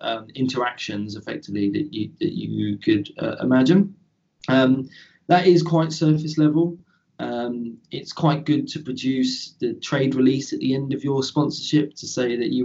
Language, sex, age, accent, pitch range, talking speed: English, male, 20-39, British, 110-150 Hz, 165 wpm